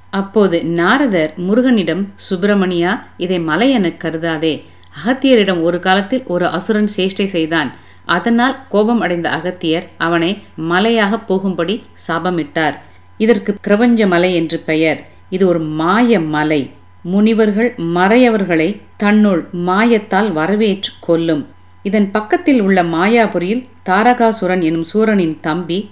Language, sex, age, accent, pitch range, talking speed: Tamil, female, 50-69, native, 165-210 Hz, 105 wpm